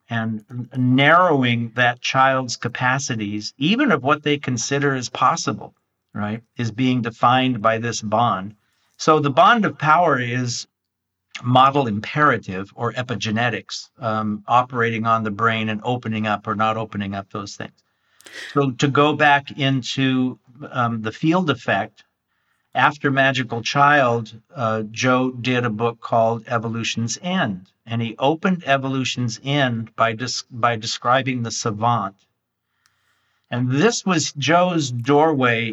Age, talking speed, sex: 50-69, 135 wpm, male